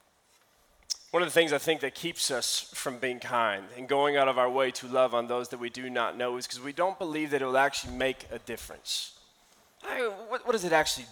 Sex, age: male, 20-39